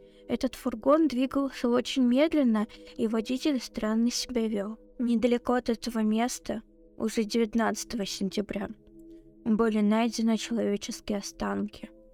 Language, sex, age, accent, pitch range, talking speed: Russian, female, 20-39, native, 205-240 Hz, 105 wpm